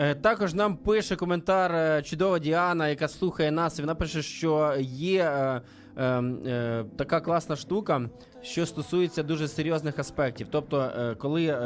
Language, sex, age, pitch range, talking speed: Ukrainian, male, 20-39, 125-160 Hz, 140 wpm